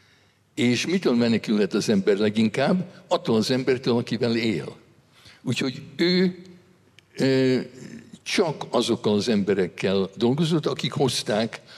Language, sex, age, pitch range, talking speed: Hungarian, male, 60-79, 110-160 Hz, 105 wpm